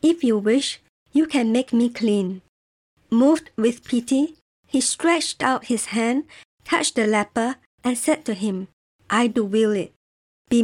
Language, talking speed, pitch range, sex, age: English, 160 wpm, 215-270 Hz, male, 50-69